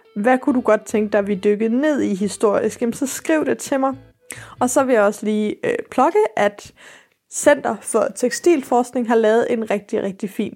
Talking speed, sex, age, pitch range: 195 wpm, female, 20-39, 215-265 Hz